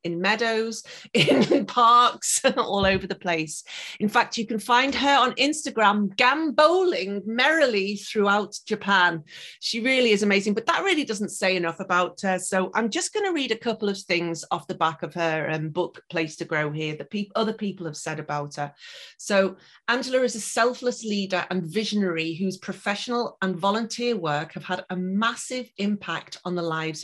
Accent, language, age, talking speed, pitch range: British, English, 30-49, 180 wpm, 175-220 Hz